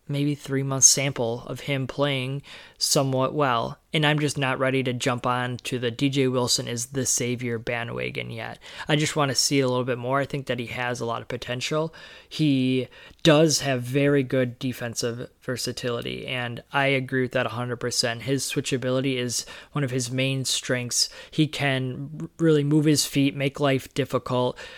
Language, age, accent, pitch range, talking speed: English, 20-39, American, 125-145 Hz, 175 wpm